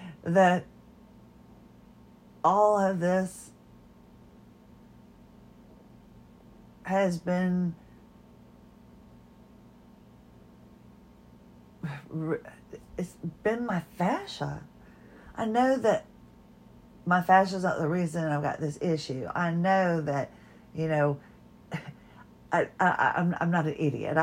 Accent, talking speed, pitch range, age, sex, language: American, 80 wpm, 145-180 Hz, 40-59, female, English